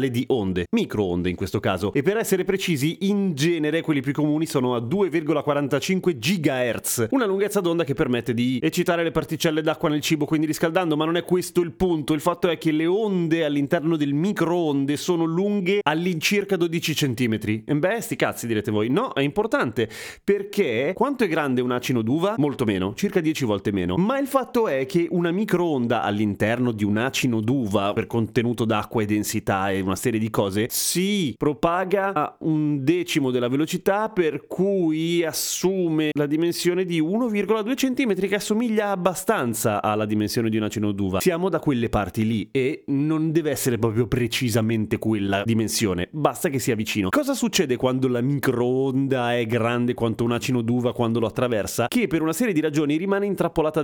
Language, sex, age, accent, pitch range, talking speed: Italian, male, 30-49, native, 120-175 Hz, 180 wpm